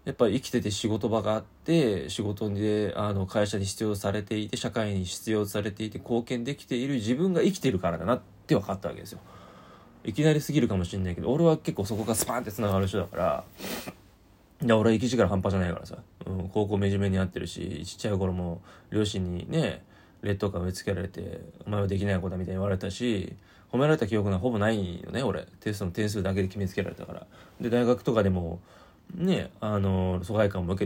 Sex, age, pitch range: male, 20-39, 95-115 Hz